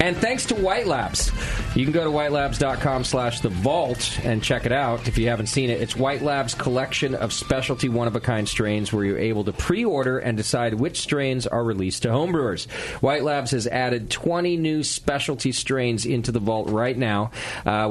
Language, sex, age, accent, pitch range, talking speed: English, male, 40-59, American, 105-135 Hz, 190 wpm